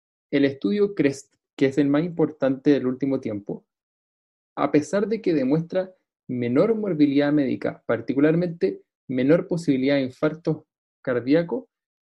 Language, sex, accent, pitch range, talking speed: Spanish, male, Argentinian, 135-170 Hz, 125 wpm